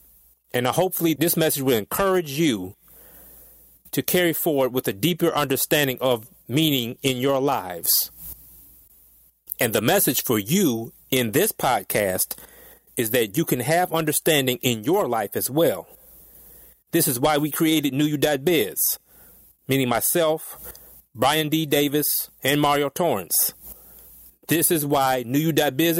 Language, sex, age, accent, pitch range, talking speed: English, male, 30-49, American, 120-160 Hz, 140 wpm